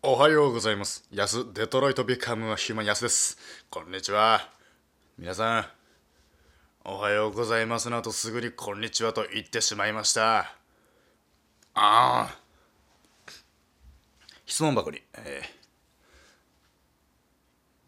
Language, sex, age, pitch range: Japanese, male, 20-39, 85-125 Hz